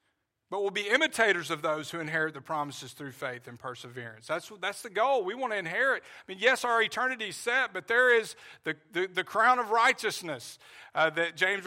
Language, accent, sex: English, American, male